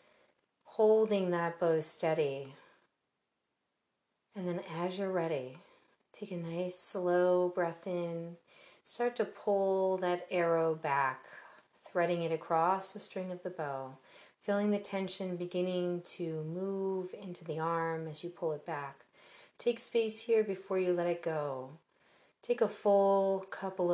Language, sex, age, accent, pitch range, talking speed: English, female, 40-59, American, 170-195 Hz, 140 wpm